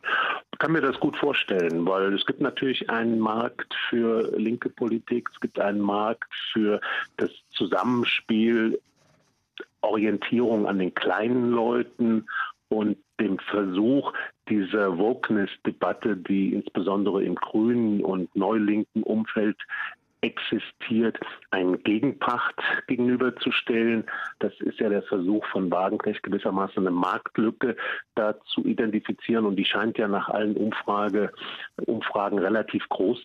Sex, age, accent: male, 50-69, German